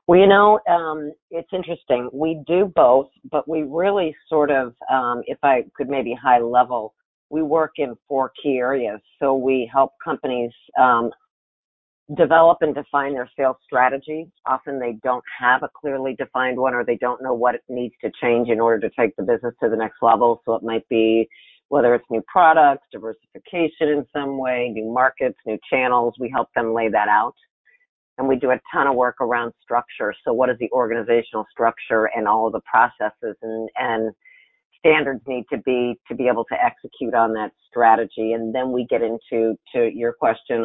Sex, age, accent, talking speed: female, 50-69, American, 190 wpm